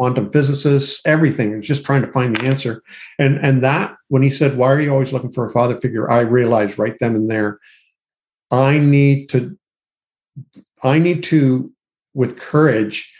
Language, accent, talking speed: English, American, 175 wpm